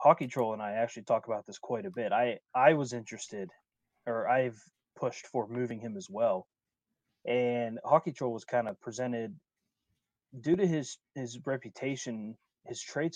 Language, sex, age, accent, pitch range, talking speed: English, male, 20-39, American, 105-130 Hz, 170 wpm